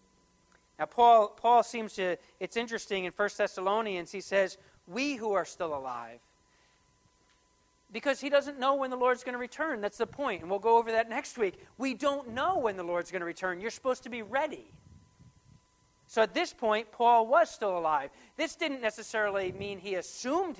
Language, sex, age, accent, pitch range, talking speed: English, male, 40-59, American, 180-235 Hz, 190 wpm